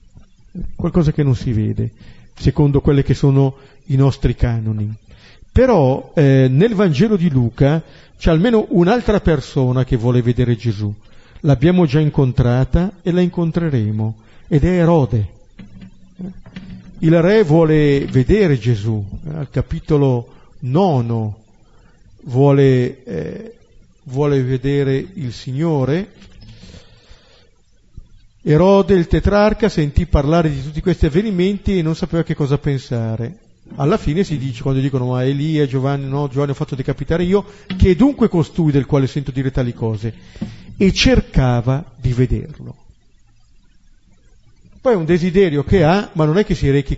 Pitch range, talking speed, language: 125-170 Hz, 135 wpm, Italian